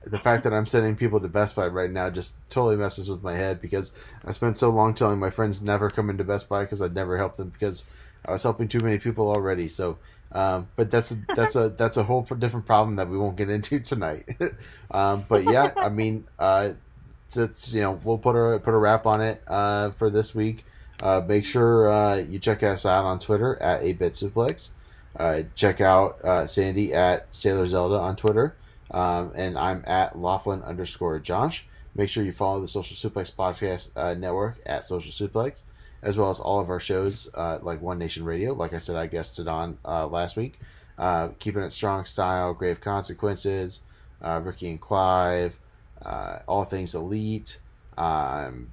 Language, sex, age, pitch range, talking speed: English, male, 30-49, 90-110 Hz, 200 wpm